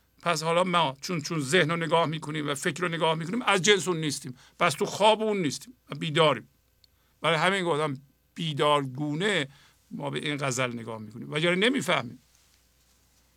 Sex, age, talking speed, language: male, 50-69, 170 wpm, Persian